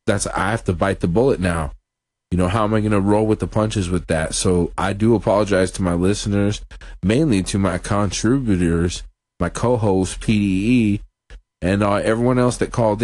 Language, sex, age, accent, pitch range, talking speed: English, male, 30-49, American, 90-105 Hz, 190 wpm